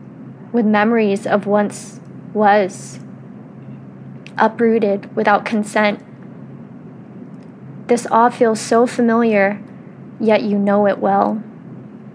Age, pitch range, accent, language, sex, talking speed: 20-39, 205-235 Hz, American, English, female, 90 wpm